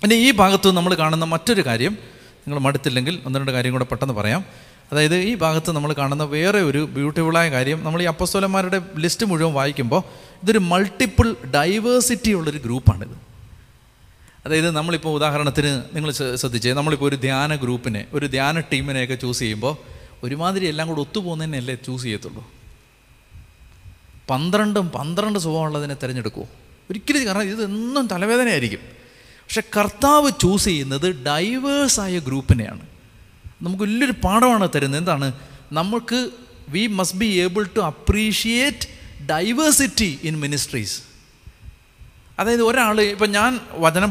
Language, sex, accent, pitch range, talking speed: Malayalam, male, native, 130-200 Hz, 120 wpm